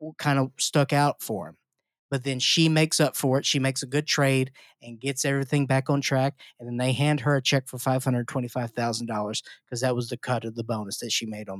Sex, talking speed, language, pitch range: male, 255 wpm, English, 130-190 Hz